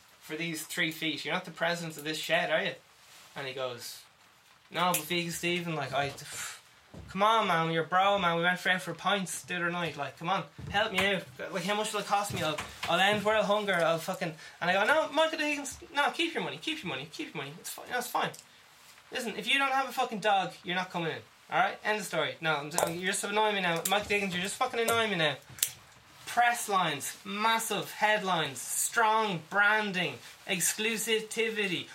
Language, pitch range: English, 155-205 Hz